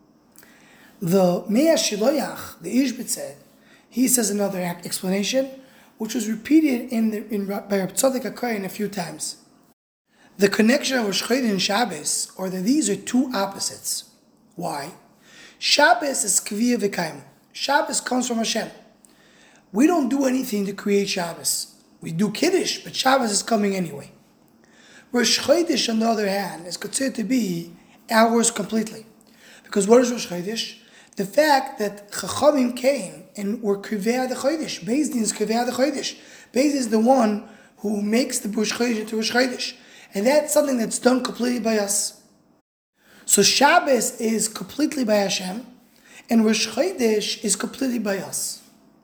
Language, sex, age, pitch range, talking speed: English, male, 20-39, 205-255 Hz, 150 wpm